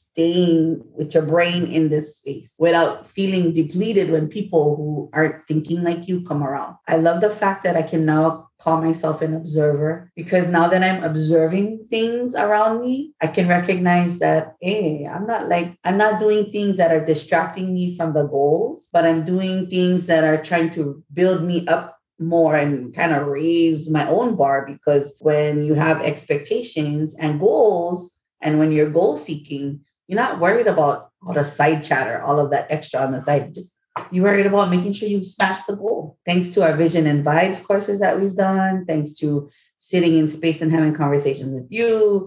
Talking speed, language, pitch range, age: 190 wpm, English, 155-185 Hz, 30-49